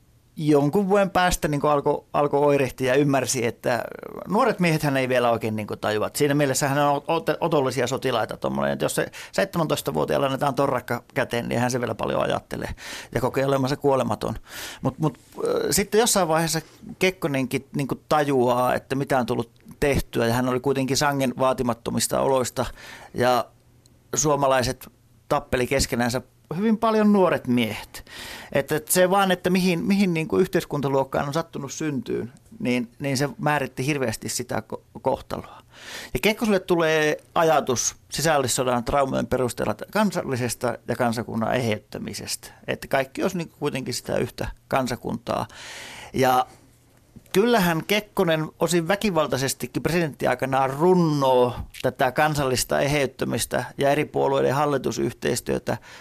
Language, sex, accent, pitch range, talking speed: Finnish, male, native, 125-165 Hz, 130 wpm